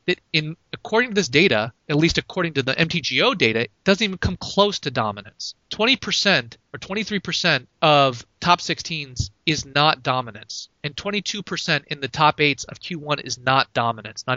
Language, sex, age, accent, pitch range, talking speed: English, male, 30-49, American, 130-185 Hz, 170 wpm